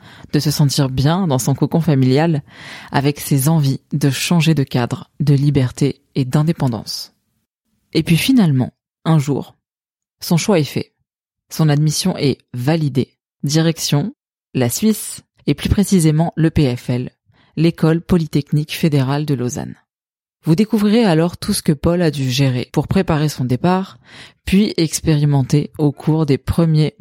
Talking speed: 145 wpm